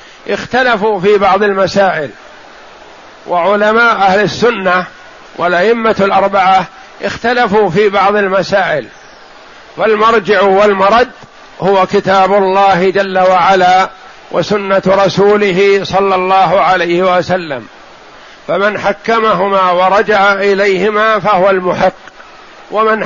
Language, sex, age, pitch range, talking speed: Arabic, male, 50-69, 180-205 Hz, 85 wpm